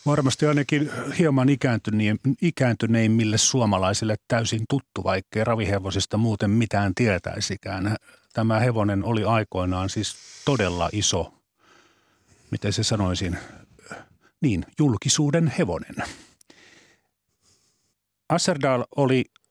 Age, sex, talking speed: 40-59, male, 85 wpm